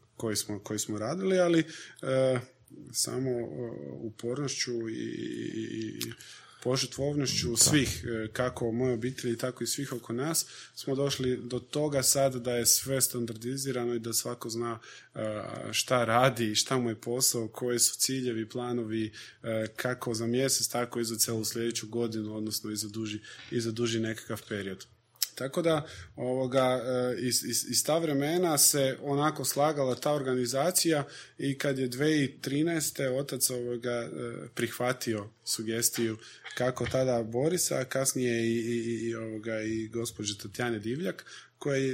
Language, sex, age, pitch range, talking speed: Croatian, male, 20-39, 115-130 Hz, 135 wpm